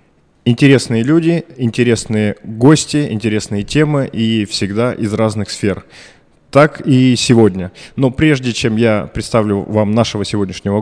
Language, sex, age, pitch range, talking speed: Russian, male, 20-39, 105-130 Hz, 120 wpm